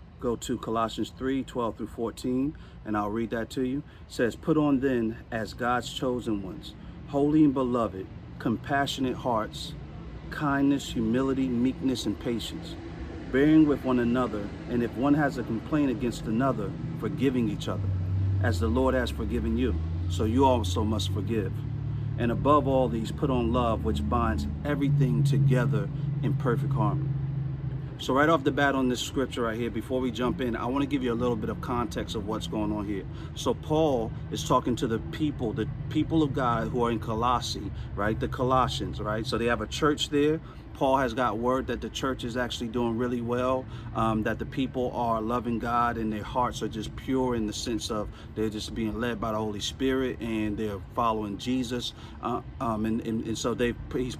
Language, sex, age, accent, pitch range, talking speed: English, male, 40-59, American, 110-130 Hz, 190 wpm